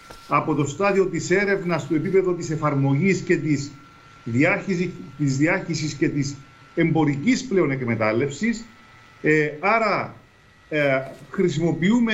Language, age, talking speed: Greek, 50-69, 90 wpm